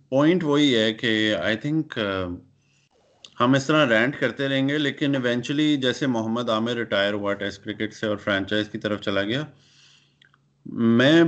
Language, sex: Urdu, male